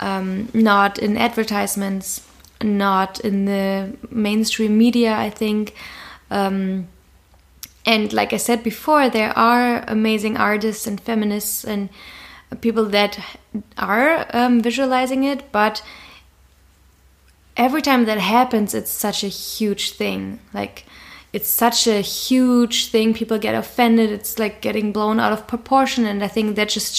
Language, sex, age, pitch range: French, female, 20-39, 200-235 Hz